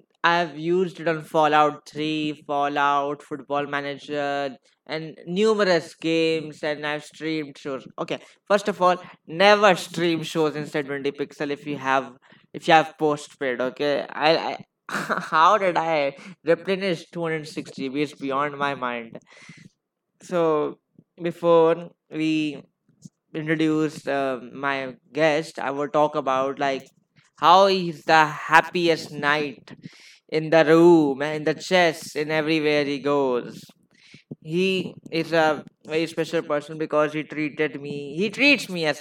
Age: 20-39